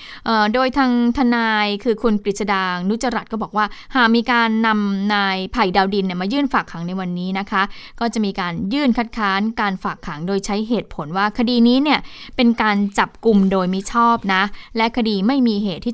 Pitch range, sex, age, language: 190-230 Hz, female, 20-39, Thai